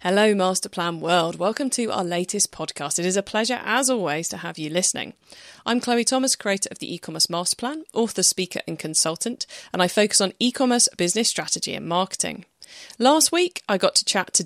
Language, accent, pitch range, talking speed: English, British, 170-225 Hz, 190 wpm